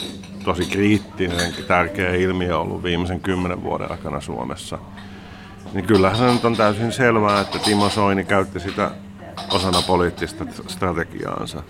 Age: 50-69